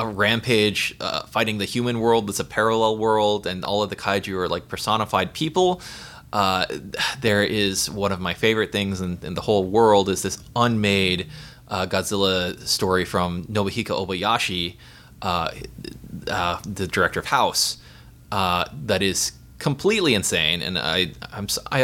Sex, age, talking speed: male, 20-39, 160 wpm